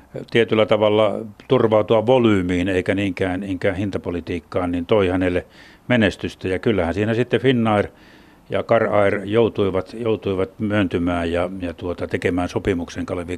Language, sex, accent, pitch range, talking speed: Finnish, male, native, 90-110 Hz, 120 wpm